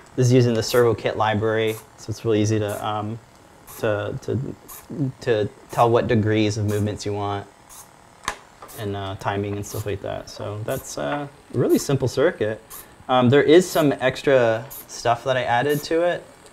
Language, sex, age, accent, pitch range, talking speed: English, male, 20-39, American, 105-125 Hz, 170 wpm